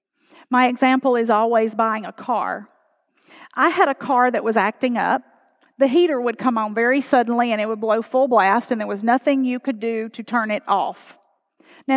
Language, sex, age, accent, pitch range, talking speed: English, female, 50-69, American, 220-280 Hz, 200 wpm